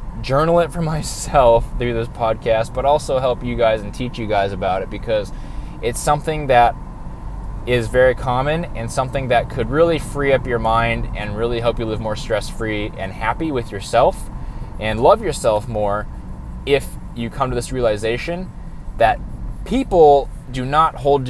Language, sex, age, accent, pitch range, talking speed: English, male, 20-39, American, 110-135 Hz, 170 wpm